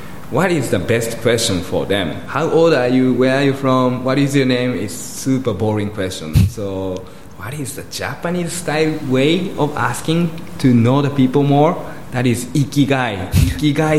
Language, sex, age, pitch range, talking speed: English, male, 20-39, 100-140 Hz, 175 wpm